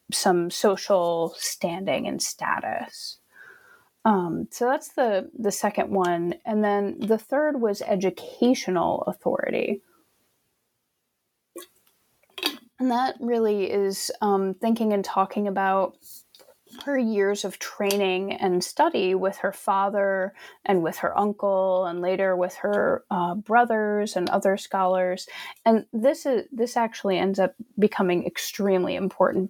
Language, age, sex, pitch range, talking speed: English, 30-49, female, 185-225 Hz, 120 wpm